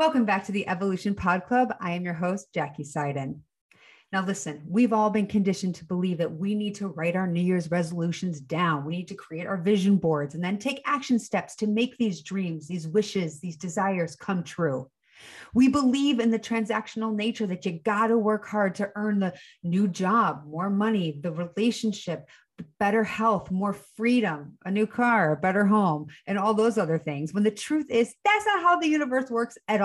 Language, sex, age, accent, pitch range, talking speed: English, female, 30-49, American, 175-225 Hz, 200 wpm